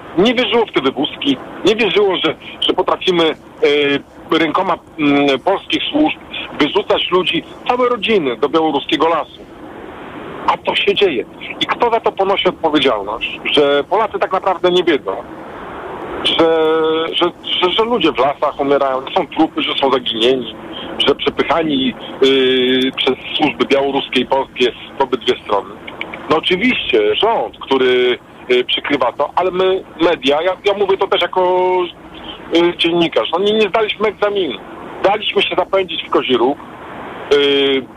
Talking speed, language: 140 wpm, Polish